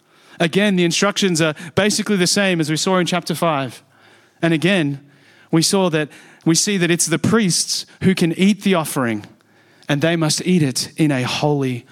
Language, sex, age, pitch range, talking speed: English, male, 30-49, 145-175 Hz, 185 wpm